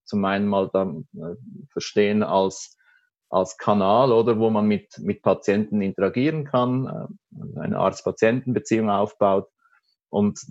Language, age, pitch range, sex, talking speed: German, 30-49, 100-120 Hz, male, 115 wpm